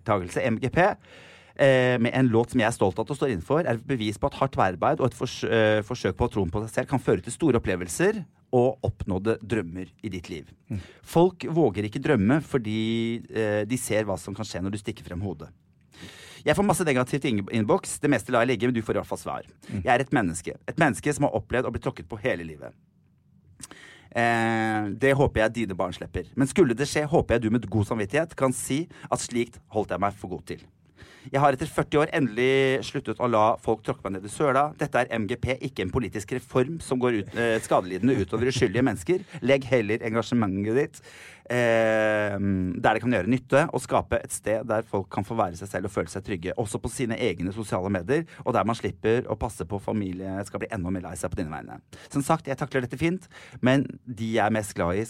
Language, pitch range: English, 105-130 Hz